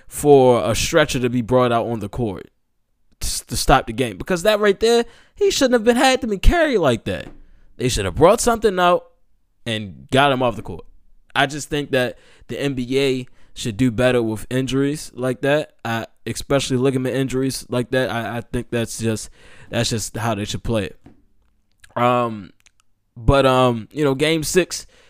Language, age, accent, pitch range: English, 20-39, American, 115-165 Hz